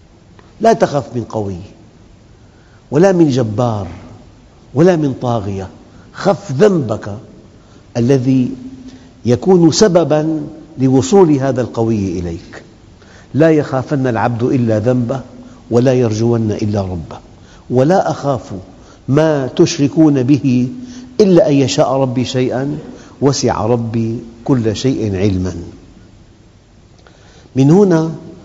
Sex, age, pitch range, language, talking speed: male, 50-69, 110-140 Hz, Arabic, 95 wpm